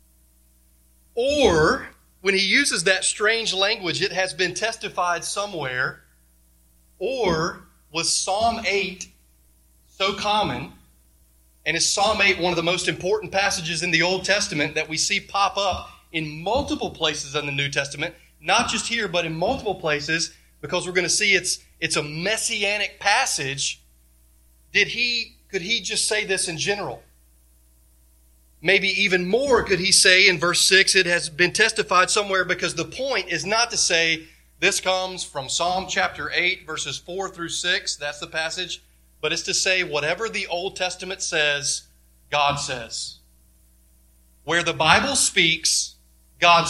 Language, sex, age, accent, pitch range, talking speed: English, male, 30-49, American, 140-195 Hz, 155 wpm